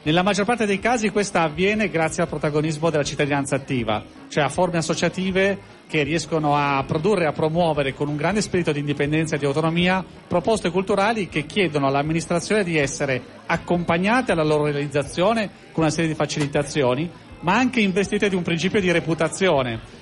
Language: Italian